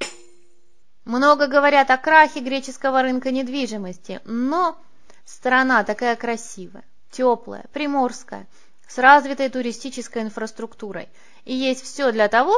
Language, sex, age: Russian, female, 20-39